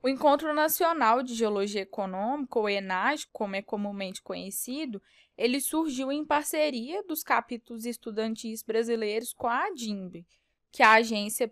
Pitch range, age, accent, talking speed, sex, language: 220-285 Hz, 10-29, Brazilian, 140 wpm, female, Portuguese